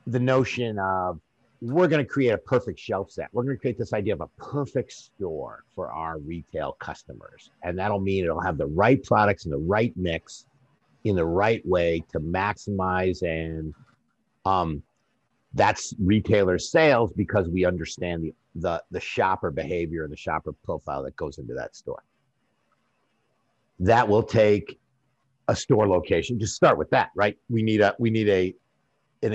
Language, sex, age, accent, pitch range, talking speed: English, male, 50-69, American, 85-115 Hz, 170 wpm